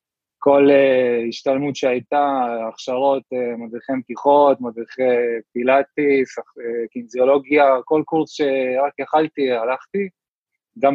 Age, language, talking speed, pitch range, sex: 20-39, Hebrew, 100 wpm, 120-150 Hz, male